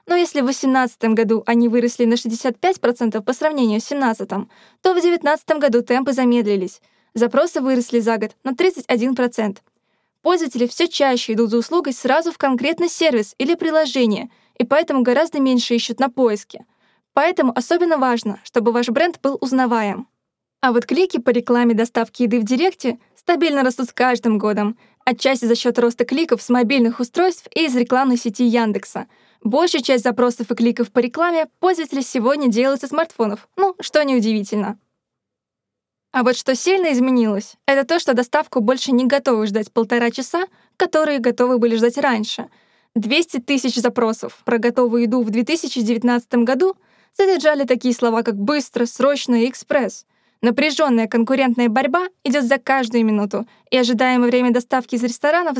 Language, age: Russian, 20-39